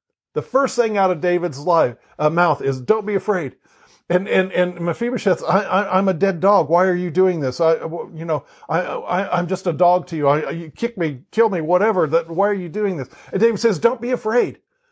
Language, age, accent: English, 50-69, American